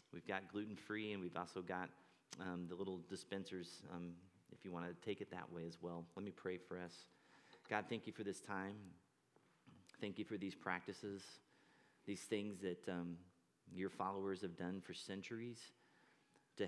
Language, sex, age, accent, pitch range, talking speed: English, male, 30-49, American, 85-95 Hz, 175 wpm